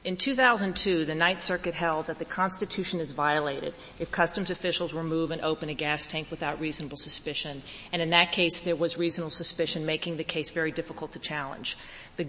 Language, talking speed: English, 190 wpm